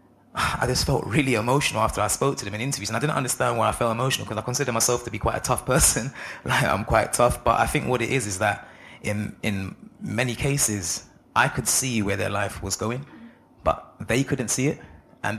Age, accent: 20-39, British